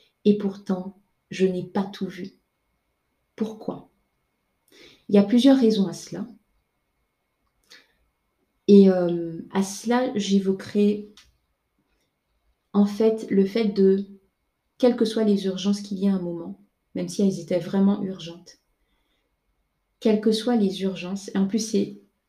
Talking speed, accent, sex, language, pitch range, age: 135 wpm, French, female, French, 190-215 Hz, 30-49